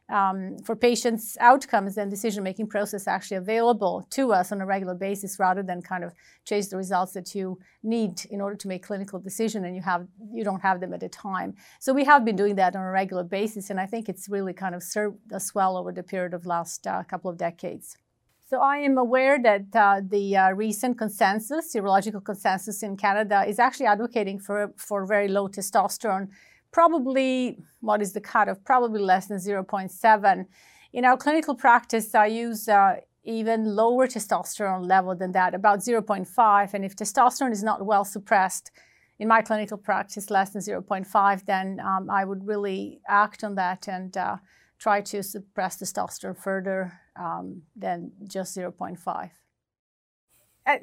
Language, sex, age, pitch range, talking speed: English, female, 40-59, 190-225 Hz, 175 wpm